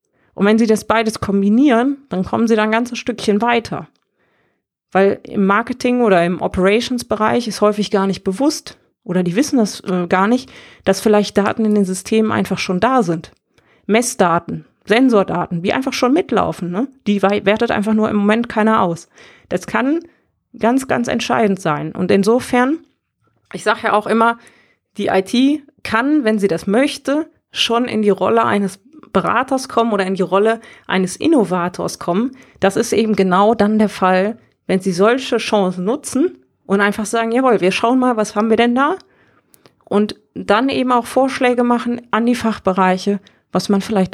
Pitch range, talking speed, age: 195-240 Hz, 175 wpm, 30-49